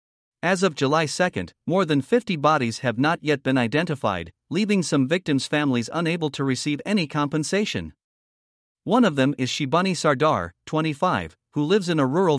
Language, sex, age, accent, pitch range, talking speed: English, male, 50-69, American, 130-170 Hz, 165 wpm